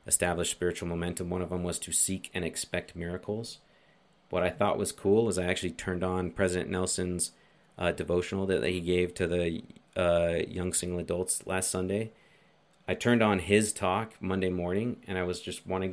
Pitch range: 85-105 Hz